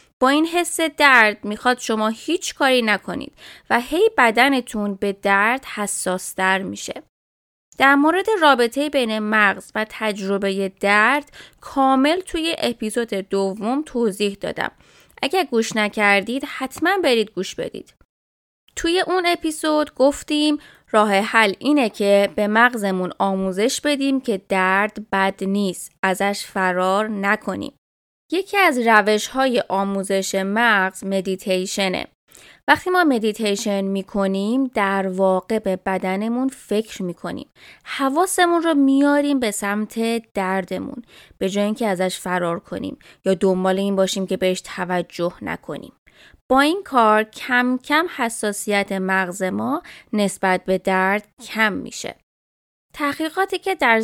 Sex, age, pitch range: female, 20-39, 195-265 Hz